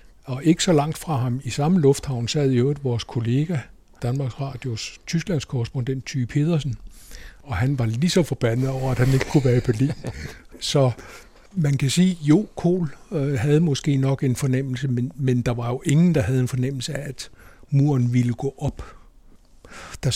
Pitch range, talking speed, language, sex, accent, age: 120-145 Hz, 185 wpm, Danish, male, native, 60-79